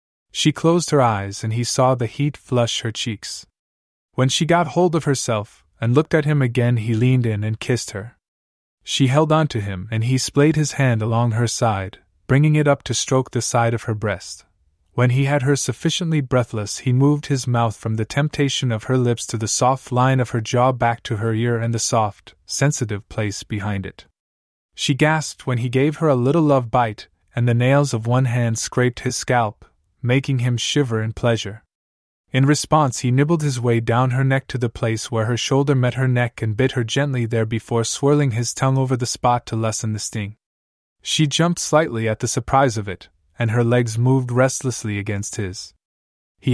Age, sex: 20-39, male